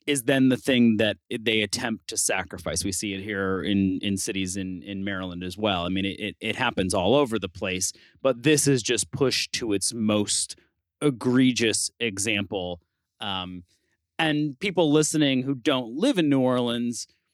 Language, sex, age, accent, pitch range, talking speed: English, male, 30-49, American, 95-120 Hz, 175 wpm